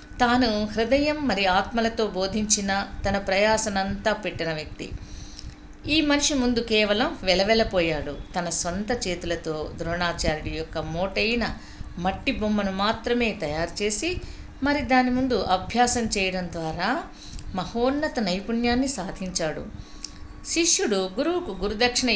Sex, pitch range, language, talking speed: female, 180-240 Hz, Telugu, 100 wpm